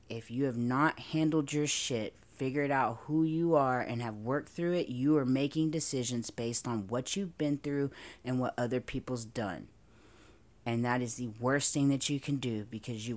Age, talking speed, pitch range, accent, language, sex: 30-49, 200 wpm, 125-165 Hz, American, English, female